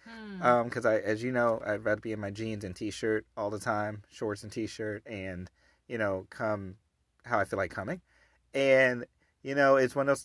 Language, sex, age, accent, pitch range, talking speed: English, male, 30-49, American, 110-130 Hz, 210 wpm